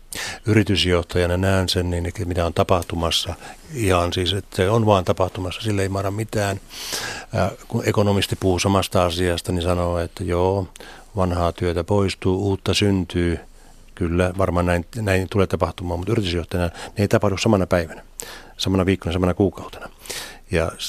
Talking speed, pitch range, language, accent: 140 wpm, 90-100 Hz, Finnish, native